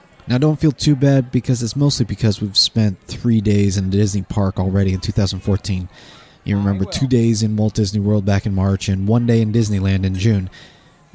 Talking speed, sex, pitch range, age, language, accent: 200 wpm, male, 105-140 Hz, 20-39, English, American